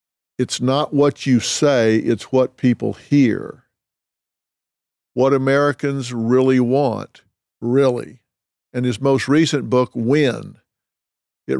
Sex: male